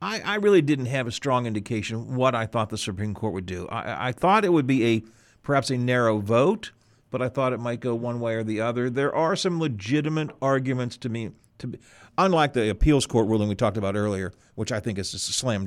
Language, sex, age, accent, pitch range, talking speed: English, male, 50-69, American, 115-160 Hz, 240 wpm